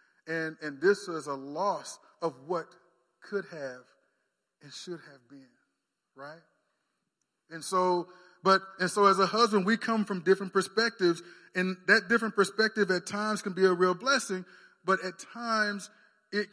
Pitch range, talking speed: 160-200 Hz, 155 wpm